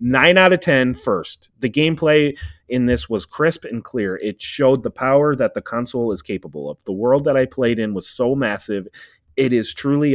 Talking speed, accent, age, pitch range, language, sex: 205 wpm, American, 30-49, 95-130 Hz, English, male